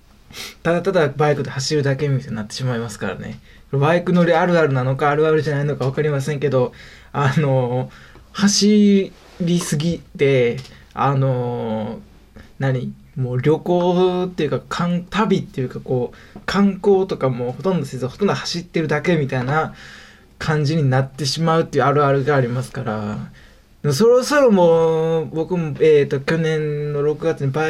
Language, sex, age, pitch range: Japanese, male, 20-39, 130-170 Hz